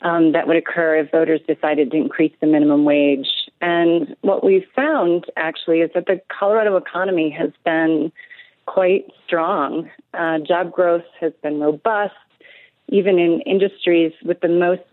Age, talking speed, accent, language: 30-49, 155 wpm, American, English